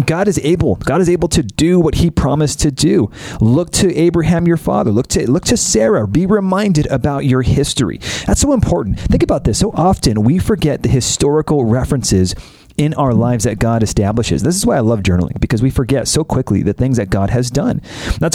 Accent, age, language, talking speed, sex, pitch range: American, 30-49, English, 215 wpm, male, 115-160 Hz